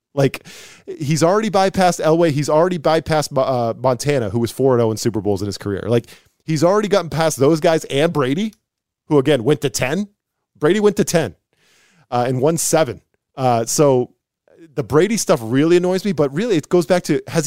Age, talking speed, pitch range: 20-39, 195 wpm, 125-165 Hz